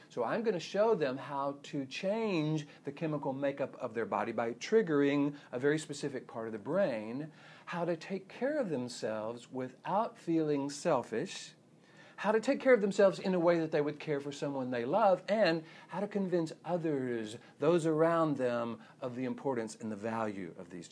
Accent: American